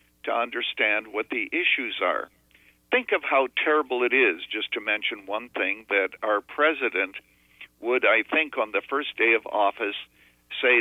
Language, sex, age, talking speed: English, male, 60-79, 165 wpm